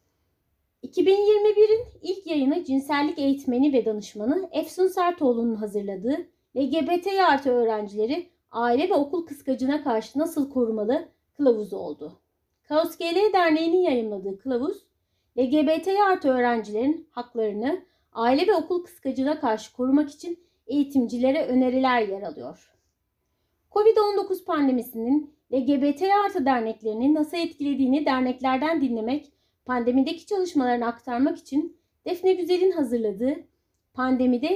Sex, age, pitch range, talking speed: female, 30-49, 245-320 Hz, 100 wpm